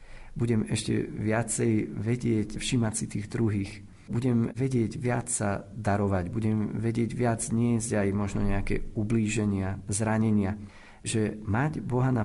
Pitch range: 105-120 Hz